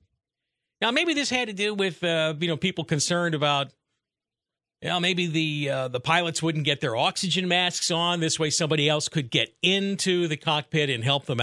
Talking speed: 190 wpm